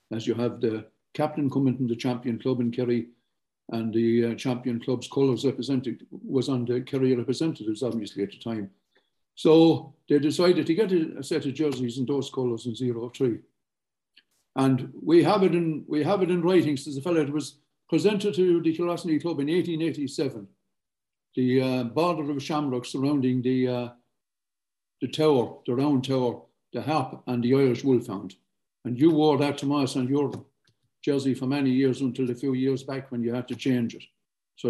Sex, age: male, 60-79